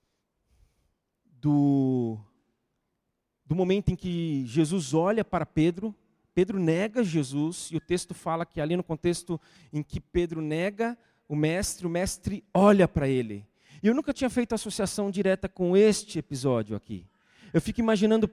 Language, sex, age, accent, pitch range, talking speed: Portuguese, male, 40-59, Brazilian, 145-195 Hz, 145 wpm